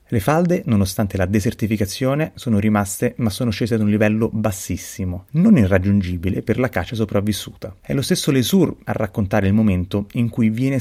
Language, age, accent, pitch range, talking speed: Italian, 30-49, native, 95-120 Hz, 170 wpm